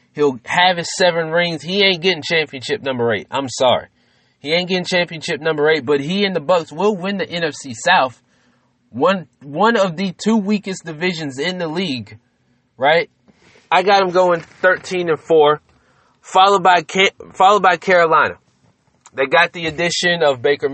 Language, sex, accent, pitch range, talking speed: English, male, American, 155-205 Hz, 160 wpm